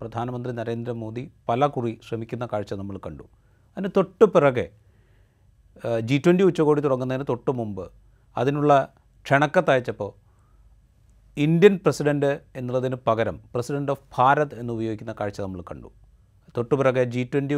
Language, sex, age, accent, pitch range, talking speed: Malayalam, male, 30-49, native, 110-135 Hz, 105 wpm